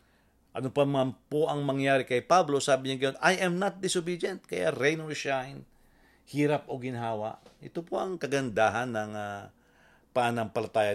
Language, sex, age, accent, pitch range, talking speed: English, male, 40-59, Filipino, 130-170 Hz, 160 wpm